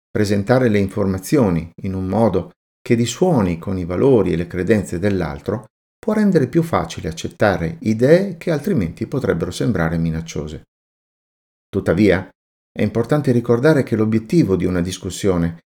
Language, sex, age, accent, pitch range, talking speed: Italian, male, 50-69, native, 85-125 Hz, 135 wpm